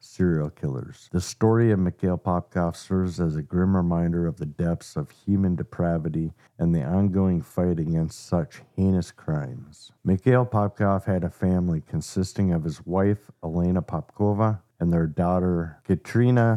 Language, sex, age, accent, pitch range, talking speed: English, male, 50-69, American, 85-105 Hz, 150 wpm